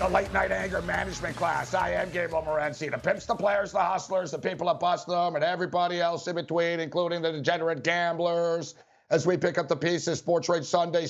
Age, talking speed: 50-69, 210 wpm